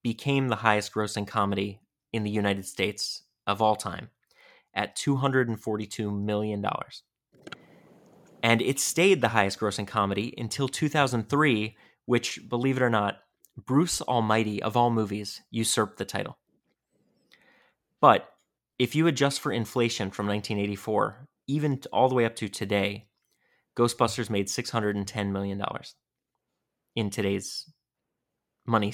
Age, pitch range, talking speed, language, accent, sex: 30-49, 105-130 Hz, 120 wpm, English, American, male